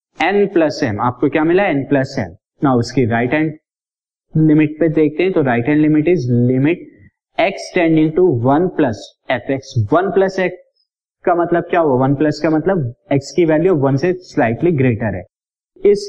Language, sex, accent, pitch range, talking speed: Hindi, male, native, 125-175 Hz, 65 wpm